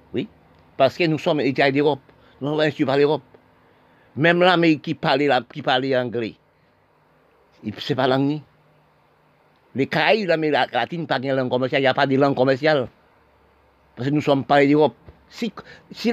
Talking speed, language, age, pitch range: 165 wpm, French, 50-69, 125-155 Hz